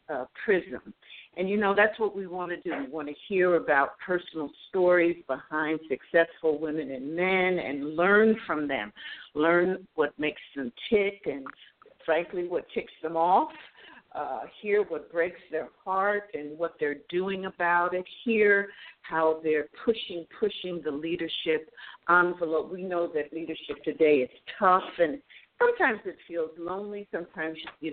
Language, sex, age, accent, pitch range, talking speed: English, female, 50-69, American, 160-195 Hz, 155 wpm